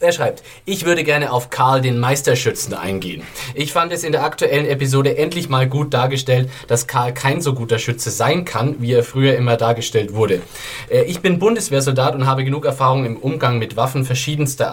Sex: male